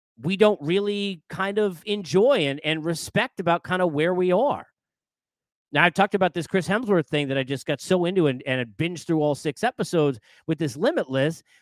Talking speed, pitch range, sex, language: 205 wpm, 150-200 Hz, male, English